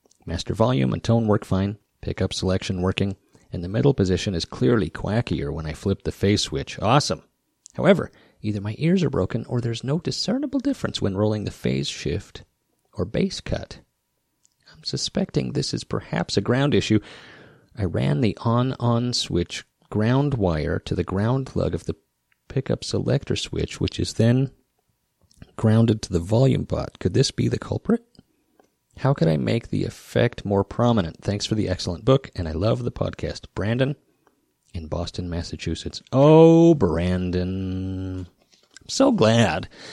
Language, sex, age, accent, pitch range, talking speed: English, male, 30-49, American, 90-120 Hz, 160 wpm